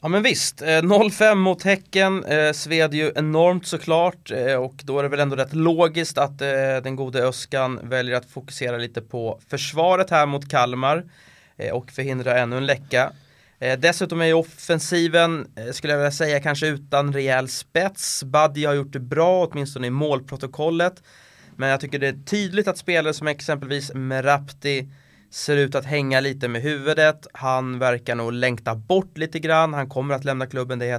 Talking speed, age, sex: 170 wpm, 20-39, male